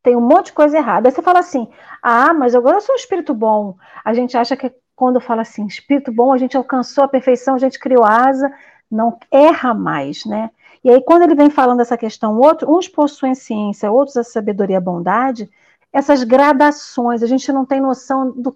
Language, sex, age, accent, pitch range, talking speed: Portuguese, female, 50-69, Brazilian, 230-295 Hz, 215 wpm